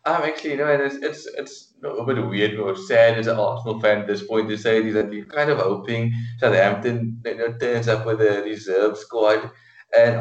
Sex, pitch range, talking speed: male, 110-130 Hz, 225 wpm